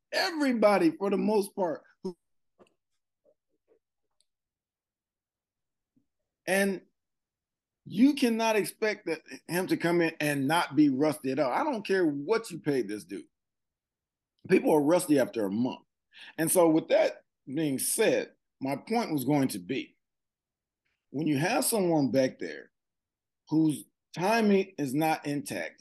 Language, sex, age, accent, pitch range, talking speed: English, male, 40-59, American, 140-200 Hz, 135 wpm